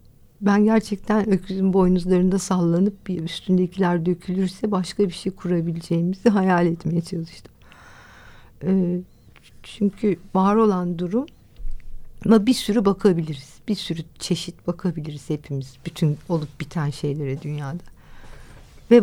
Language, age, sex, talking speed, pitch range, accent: Turkish, 60-79, female, 105 wpm, 160-200 Hz, native